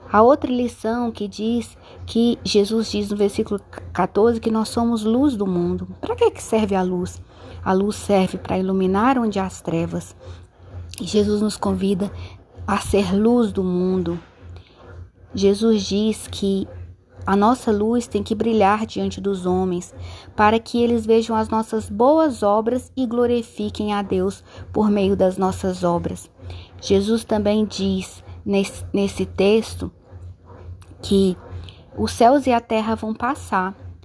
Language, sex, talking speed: Portuguese, female, 145 wpm